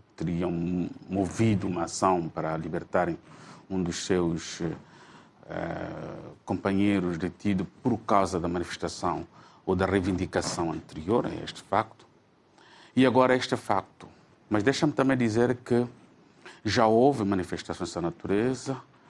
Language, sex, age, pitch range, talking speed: Portuguese, male, 50-69, 95-125 Hz, 115 wpm